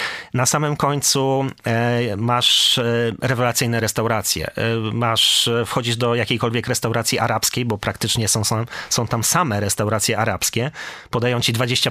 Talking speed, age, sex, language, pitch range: 120 wpm, 30-49, male, Polish, 110-130 Hz